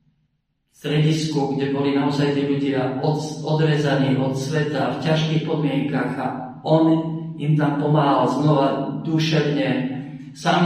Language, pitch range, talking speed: Slovak, 140-160 Hz, 115 wpm